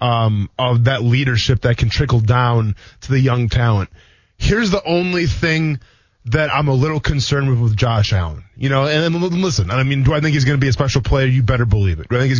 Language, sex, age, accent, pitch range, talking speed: English, male, 20-39, American, 120-155 Hz, 240 wpm